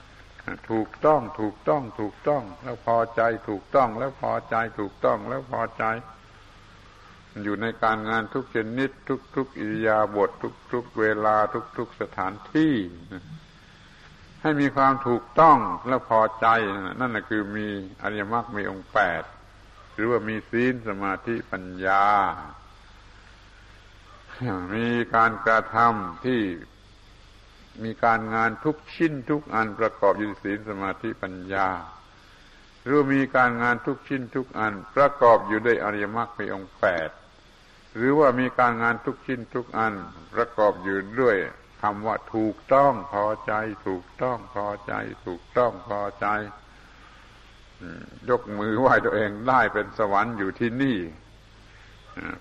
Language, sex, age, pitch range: Thai, male, 70-89, 100-120 Hz